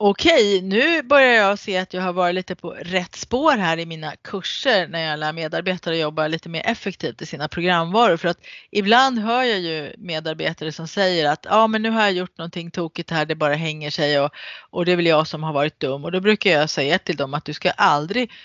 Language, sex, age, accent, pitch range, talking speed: Swedish, female, 30-49, native, 145-190 Hz, 240 wpm